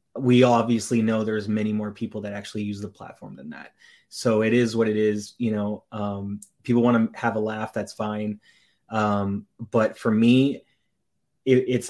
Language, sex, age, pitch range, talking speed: English, male, 30-49, 110-120 Hz, 180 wpm